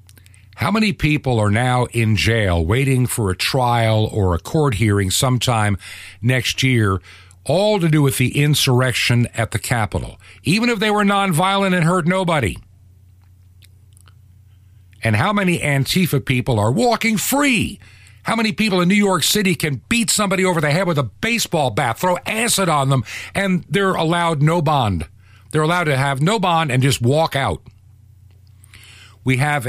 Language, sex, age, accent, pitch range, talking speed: English, male, 50-69, American, 100-150 Hz, 165 wpm